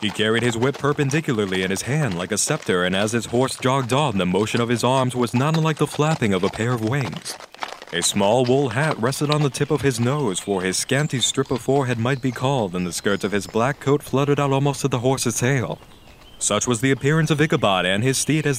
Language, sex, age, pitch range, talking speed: English, male, 30-49, 105-145 Hz, 245 wpm